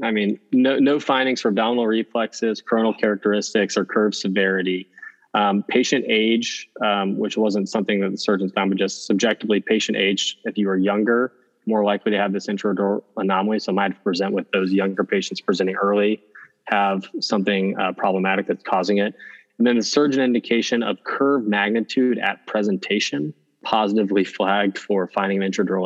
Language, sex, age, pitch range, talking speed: English, male, 20-39, 95-110 Hz, 165 wpm